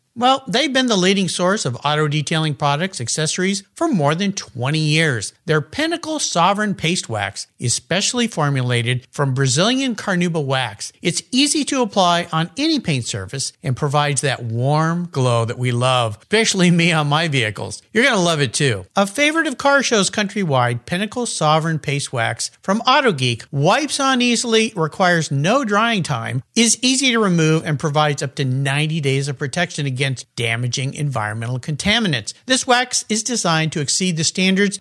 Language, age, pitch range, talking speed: English, 50-69, 135-200 Hz, 170 wpm